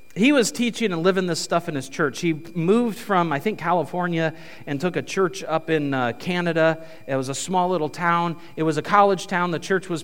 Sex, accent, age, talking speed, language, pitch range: male, American, 40-59, 225 wpm, English, 170-235 Hz